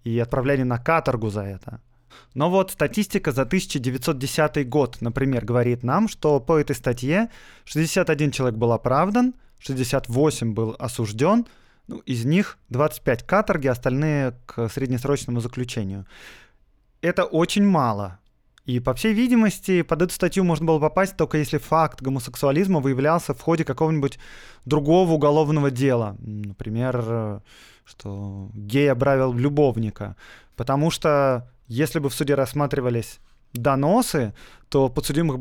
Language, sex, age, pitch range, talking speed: Russian, male, 20-39, 120-155 Hz, 125 wpm